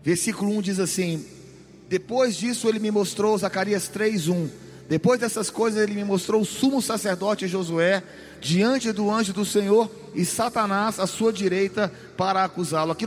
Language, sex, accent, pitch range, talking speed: Portuguese, male, Brazilian, 185-250 Hz, 155 wpm